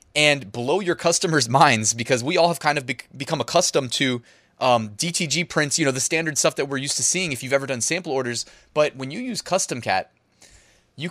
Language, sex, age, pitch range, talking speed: English, male, 20-39, 120-160 Hz, 210 wpm